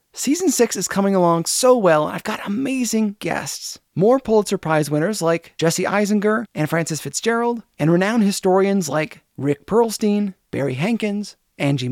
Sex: male